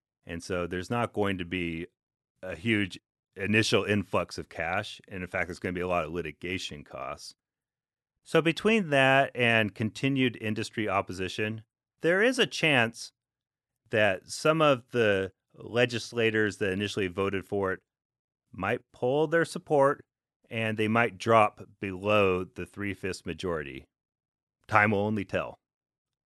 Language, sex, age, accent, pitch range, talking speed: English, male, 30-49, American, 100-140 Hz, 140 wpm